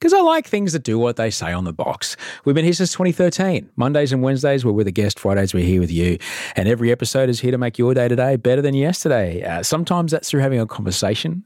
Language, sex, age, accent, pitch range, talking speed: English, male, 40-59, Australian, 95-135 Hz, 255 wpm